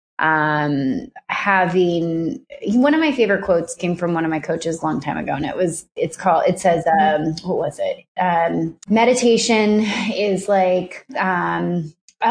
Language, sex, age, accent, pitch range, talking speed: English, female, 20-39, American, 165-200 Hz, 155 wpm